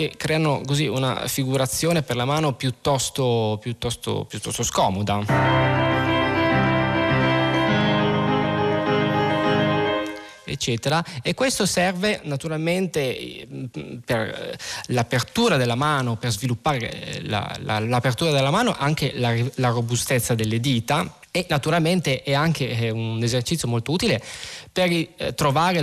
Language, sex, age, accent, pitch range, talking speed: Italian, male, 20-39, native, 115-160 Hz, 100 wpm